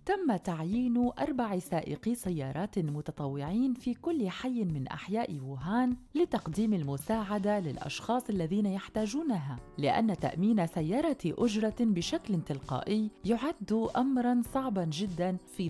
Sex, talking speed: female, 105 wpm